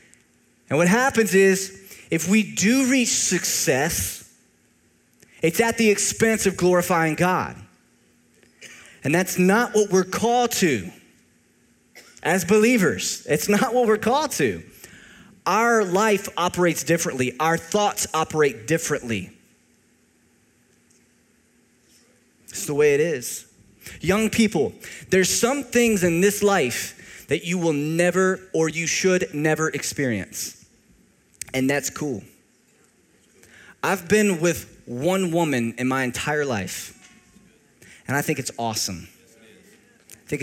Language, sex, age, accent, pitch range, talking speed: English, male, 30-49, American, 135-195 Hz, 120 wpm